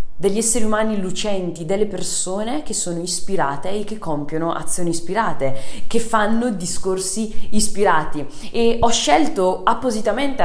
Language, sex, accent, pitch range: Italian, female, native, 175-235 Hz